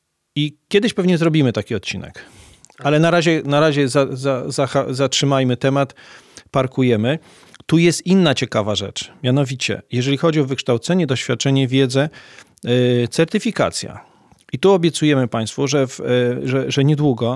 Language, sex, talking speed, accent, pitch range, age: Polish, male, 140 wpm, native, 125-150 Hz, 40-59